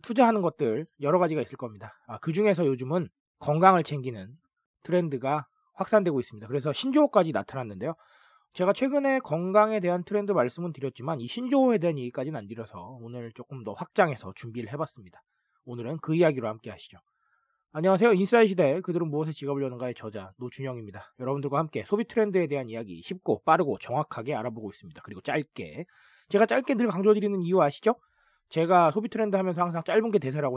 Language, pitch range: Korean, 125-190 Hz